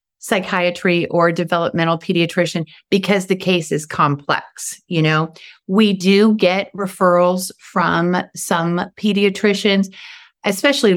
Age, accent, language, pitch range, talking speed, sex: 30-49, American, English, 155-190 Hz, 105 wpm, female